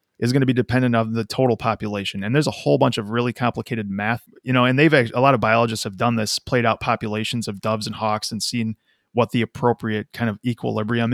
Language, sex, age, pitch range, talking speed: English, male, 20-39, 110-130 Hz, 235 wpm